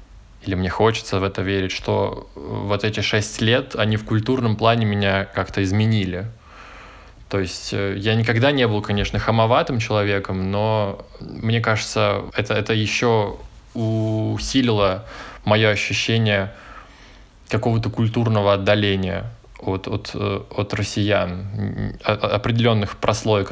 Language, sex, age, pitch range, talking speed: Russian, male, 20-39, 100-115 Hz, 115 wpm